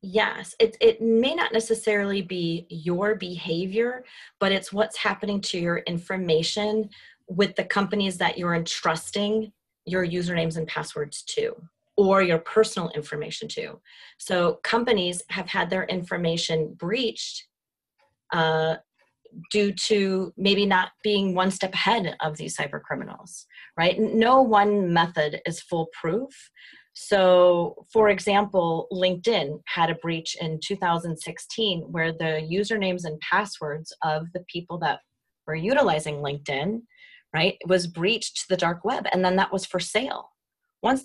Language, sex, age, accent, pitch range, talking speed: English, female, 30-49, American, 170-215 Hz, 135 wpm